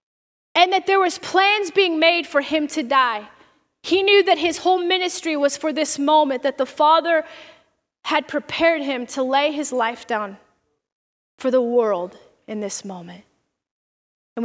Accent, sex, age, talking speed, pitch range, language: American, female, 30-49, 160 wpm, 270-360 Hz, English